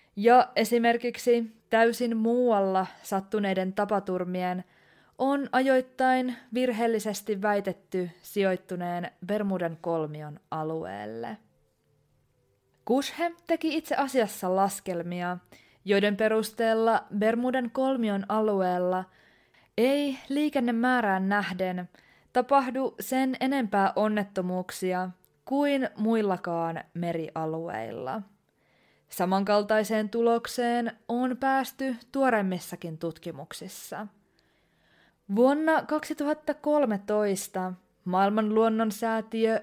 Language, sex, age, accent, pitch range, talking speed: Finnish, female, 20-39, native, 185-245 Hz, 65 wpm